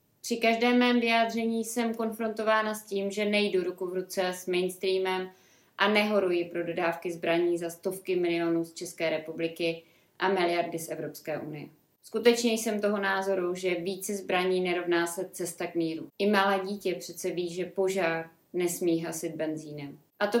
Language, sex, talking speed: Czech, female, 160 wpm